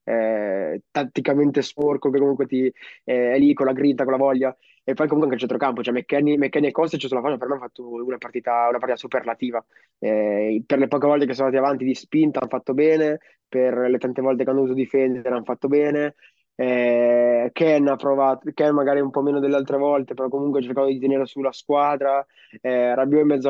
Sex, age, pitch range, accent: male, 20-39, 130-145 Hz, native